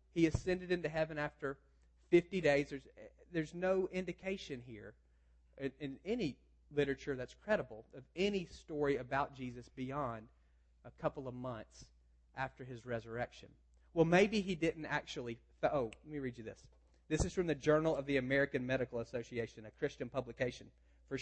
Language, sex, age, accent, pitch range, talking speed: English, male, 40-59, American, 115-170 Hz, 160 wpm